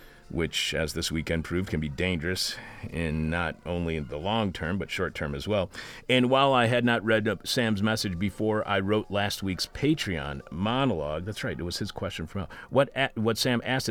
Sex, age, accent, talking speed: male, 50-69, American, 195 wpm